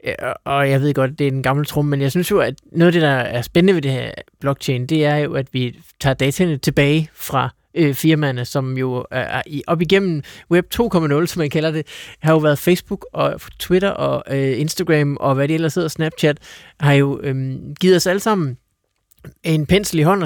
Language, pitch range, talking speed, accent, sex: Danish, 130-165 Hz, 220 wpm, native, male